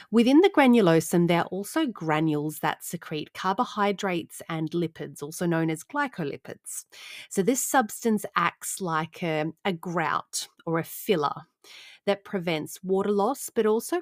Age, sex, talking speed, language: 30-49, female, 140 wpm, English